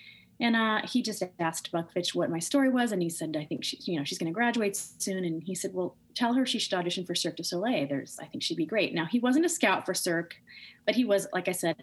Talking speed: 275 wpm